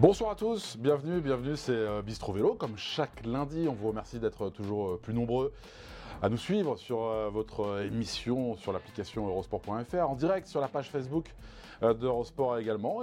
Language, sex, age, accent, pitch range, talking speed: French, male, 20-39, French, 100-140 Hz, 160 wpm